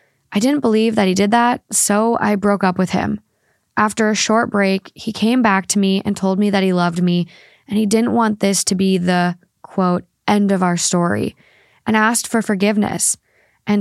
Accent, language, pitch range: American, English, 180-215 Hz